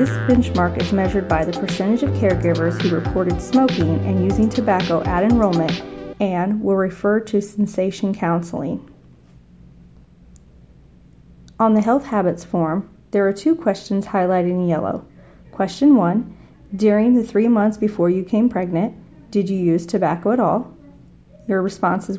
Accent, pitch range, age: American, 175-210 Hz, 40-59